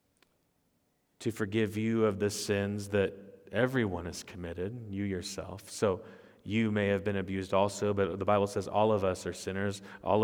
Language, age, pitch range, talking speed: English, 30-49, 100-115 Hz, 170 wpm